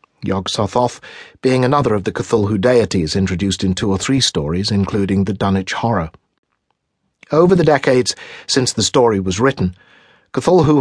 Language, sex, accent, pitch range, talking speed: English, male, British, 100-130 Hz, 150 wpm